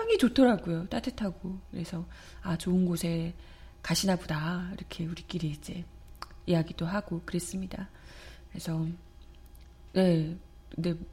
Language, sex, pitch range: Korean, female, 170-215 Hz